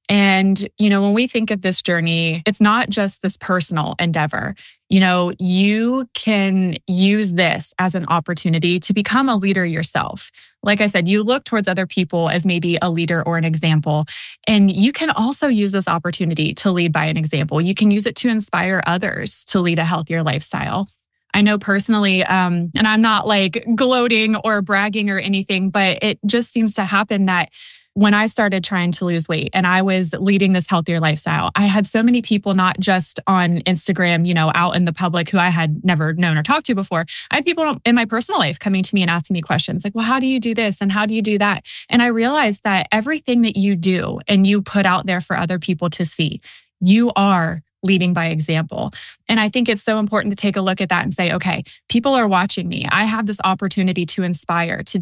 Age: 20-39